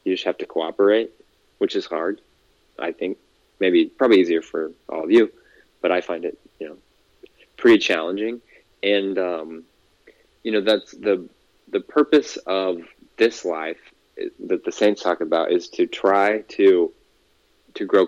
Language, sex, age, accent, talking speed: English, male, 20-39, American, 155 wpm